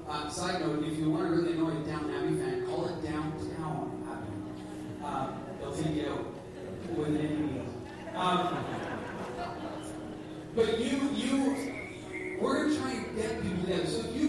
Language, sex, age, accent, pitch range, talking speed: English, male, 30-49, American, 150-190 Hz, 160 wpm